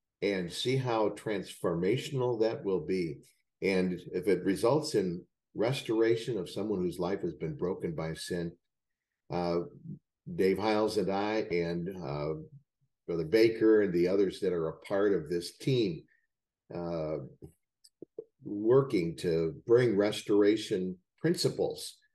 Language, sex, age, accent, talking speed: English, male, 50-69, American, 125 wpm